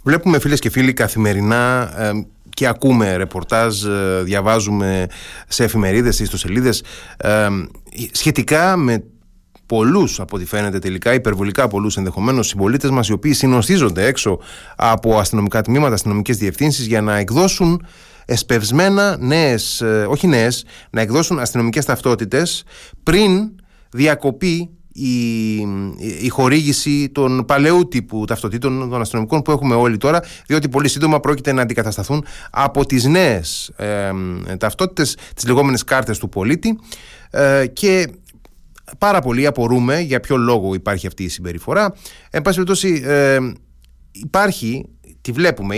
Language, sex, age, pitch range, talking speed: Greek, male, 30-49, 105-145 Hz, 130 wpm